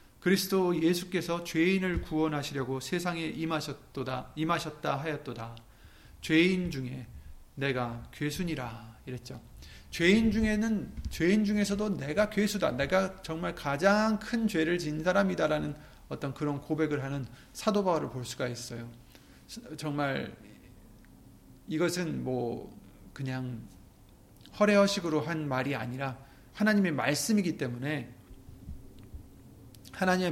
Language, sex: Korean, male